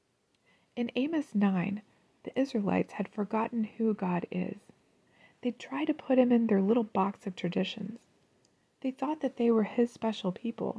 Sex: female